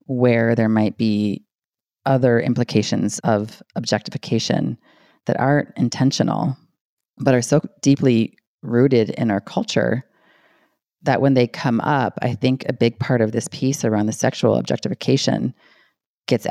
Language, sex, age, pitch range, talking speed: English, female, 30-49, 115-135 Hz, 135 wpm